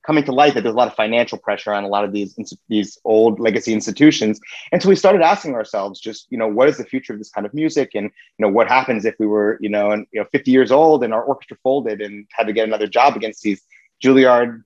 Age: 30-49